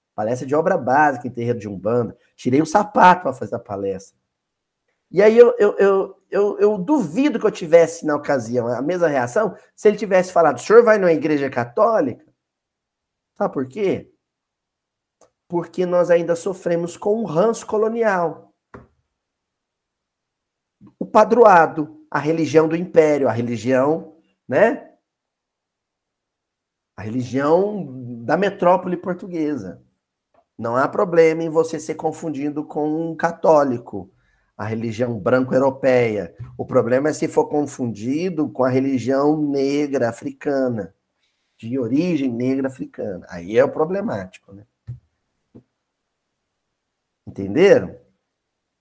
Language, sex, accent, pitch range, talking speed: Portuguese, male, Brazilian, 125-175 Hz, 125 wpm